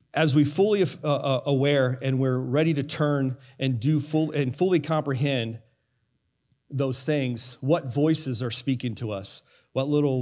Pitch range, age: 125-150 Hz, 40-59